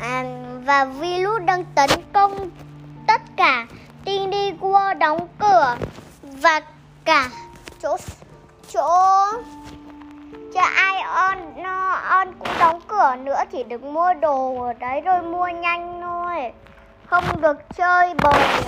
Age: 20-39